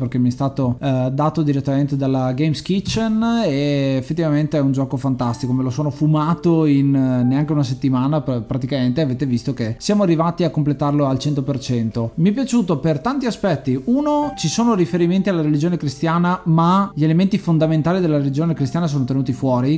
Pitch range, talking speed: 135-165 Hz, 180 wpm